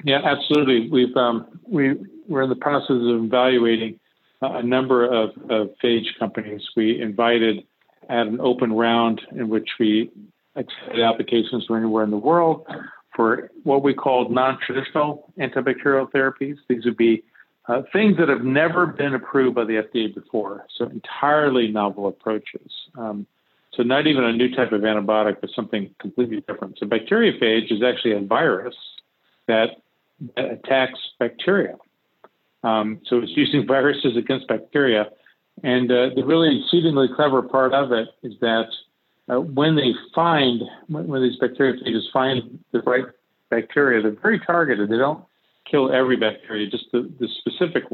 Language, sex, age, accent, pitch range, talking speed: English, male, 50-69, American, 115-135 Hz, 155 wpm